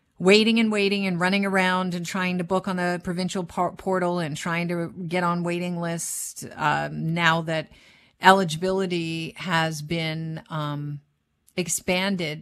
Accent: American